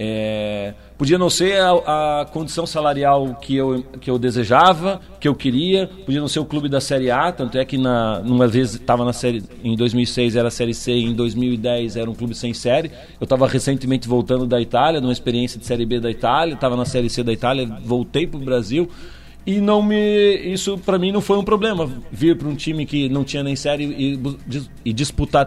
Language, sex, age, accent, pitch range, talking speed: Portuguese, male, 40-59, Brazilian, 125-170 Hz, 205 wpm